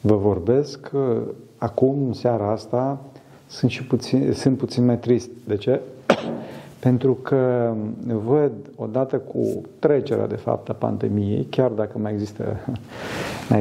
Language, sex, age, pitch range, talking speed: Romanian, male, 50-69, 110-135 Hz, 135 wpm